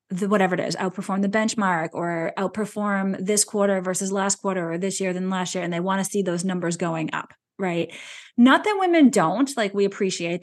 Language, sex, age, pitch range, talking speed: English, female, 20-39, 185-220 Hz, 215 wpm